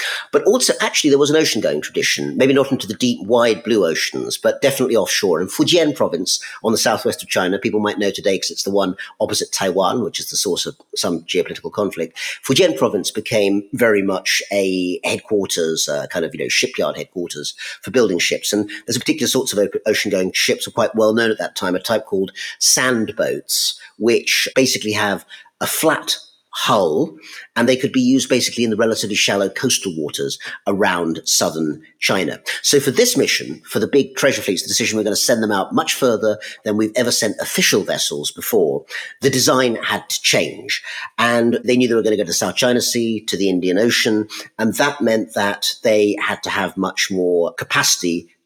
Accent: British